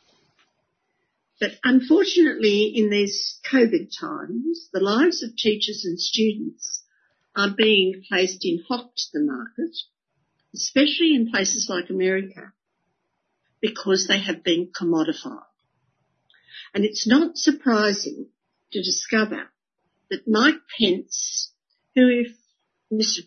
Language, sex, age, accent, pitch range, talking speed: English, female, 60-79, Australian, 195-300 Hz, 110 wpm